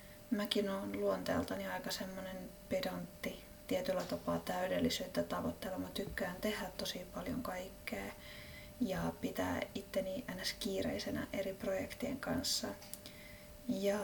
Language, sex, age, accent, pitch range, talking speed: Finnish, female, 20-39, native, 200-240 Hz, 105 wpm